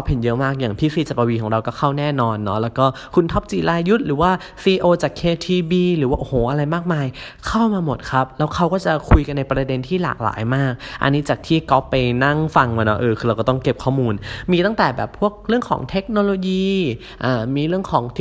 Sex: male